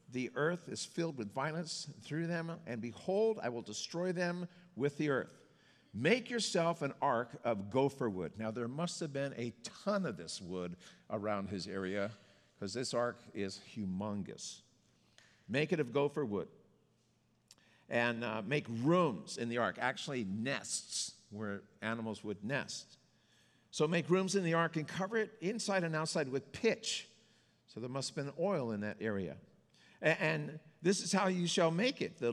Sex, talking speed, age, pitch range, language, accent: male, 170 wpm, 50-69, 110-165 Hz, English, American